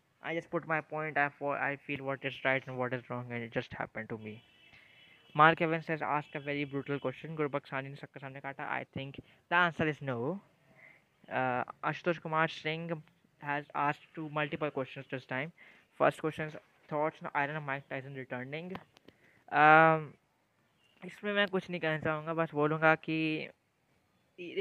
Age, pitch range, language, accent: 20-39, 140-165 Hz, Hindi, native